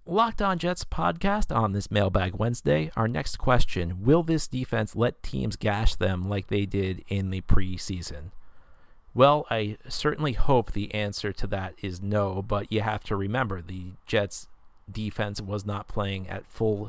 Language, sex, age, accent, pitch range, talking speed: English, male, 40-59, American, 95-115 Hz, 165 wpm